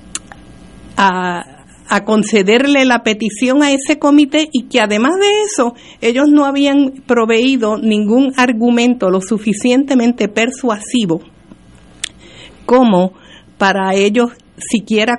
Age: 50-69